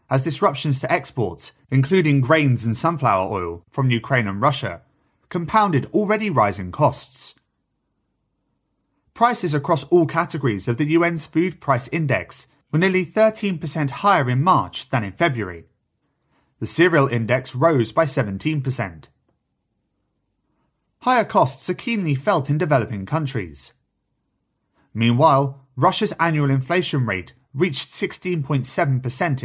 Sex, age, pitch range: male, 30-49, 125-170 Hz